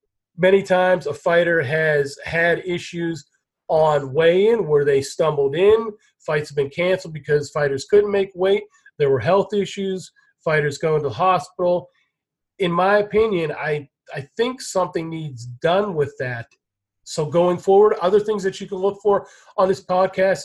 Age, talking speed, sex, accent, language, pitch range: 30-49, 160 wpm, male, American, English, 150-190 Hz